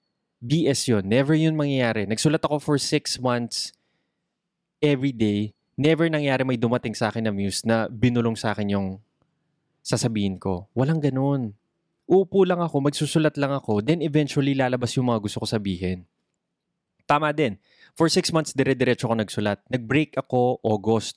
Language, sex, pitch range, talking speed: Filipino, male, 110-155 Hz, 155 wpm